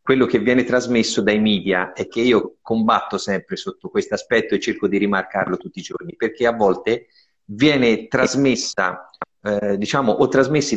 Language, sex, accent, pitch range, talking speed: Italian, male, native, 115-150 Hz, 165 wpm